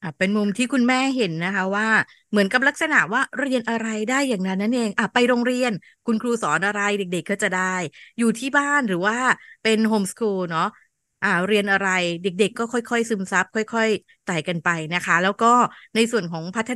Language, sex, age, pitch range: Thai, female, 20-39, 195-240 Hz